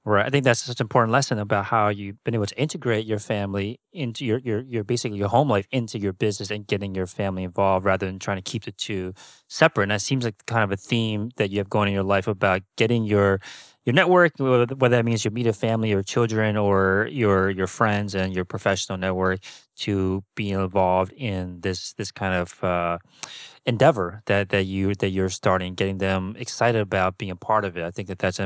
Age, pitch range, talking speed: 30-49, 95-120 Hz, 225 wpm